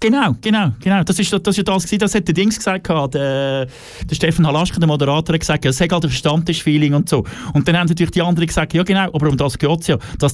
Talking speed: 260 wpm